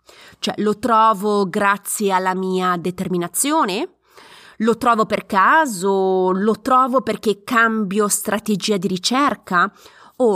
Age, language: 30-49, Italian